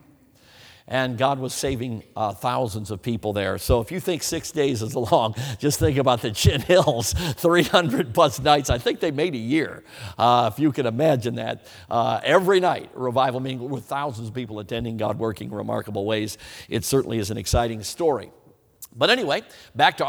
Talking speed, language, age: 185 wpm, English, 50-69